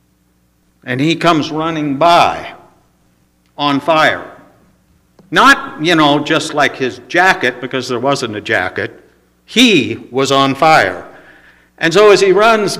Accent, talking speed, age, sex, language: American, 130 wpm, 60-79, male, English